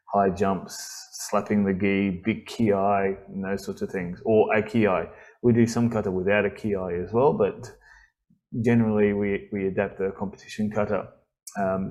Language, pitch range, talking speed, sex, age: English, 105-125 Hz, 160 wpm, male, 20-39